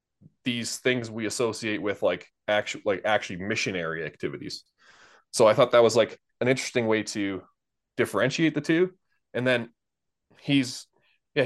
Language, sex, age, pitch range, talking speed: English, male, 20-39, 115-135 Hz, 145 wpm